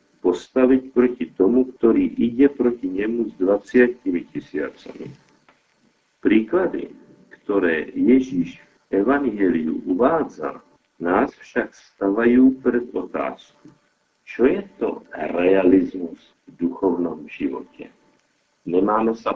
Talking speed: 95 wpm